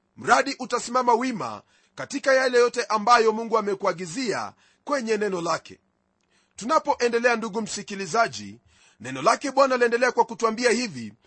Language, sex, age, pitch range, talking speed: Swahili, male, 40-59, 210-255 Hz, 115 wpm